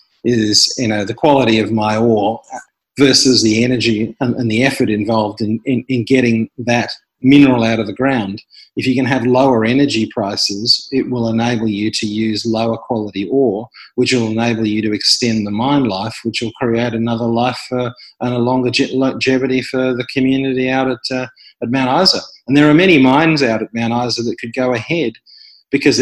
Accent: Australian